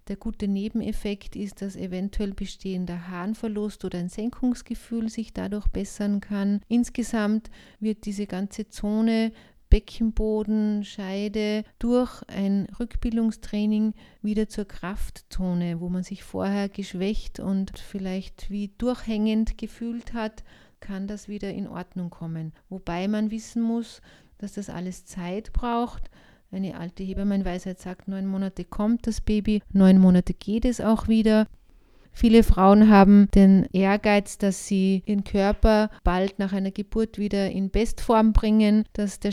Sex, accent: female, Austrian